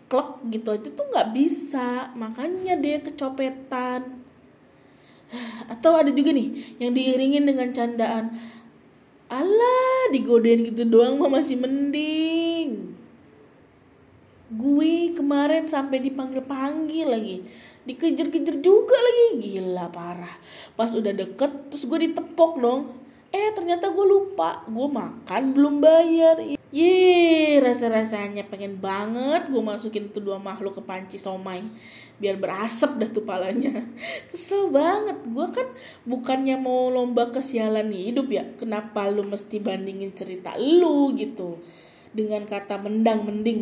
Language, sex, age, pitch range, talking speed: Indonesian, female, 20-39, 210-290 Hz, 120 wpm